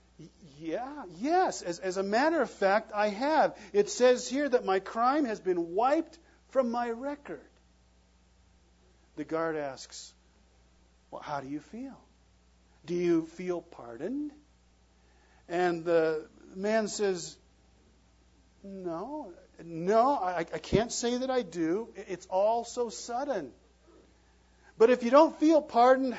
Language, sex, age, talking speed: English, male, 50-69, 130 wpm